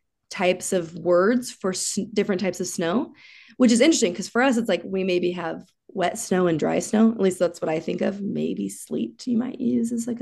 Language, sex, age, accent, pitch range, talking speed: English, female, 20-39, American, 180-230 Hz, 230 wpm